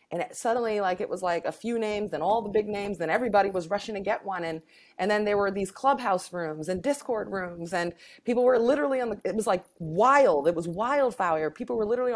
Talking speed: 235 wpm